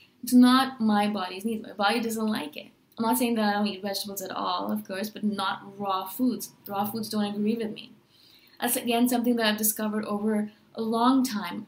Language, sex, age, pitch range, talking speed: English, female, 20-39, 200-230 Hz, 215 wpm